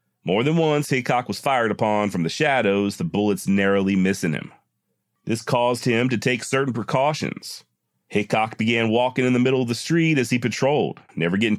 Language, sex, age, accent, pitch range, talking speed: English, male, 40-59, American, 105-130 Hz, 185 wpm